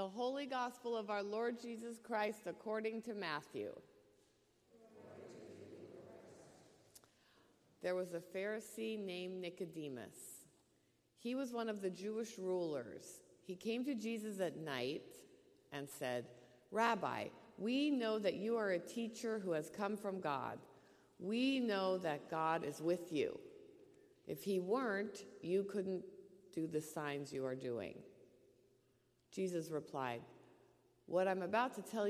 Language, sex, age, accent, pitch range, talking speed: English, female, 50-69, American, 160-235 Hz, 130 wpm